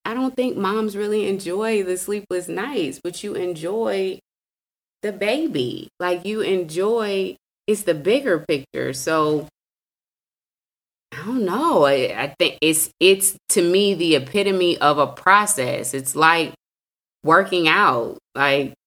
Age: 20-39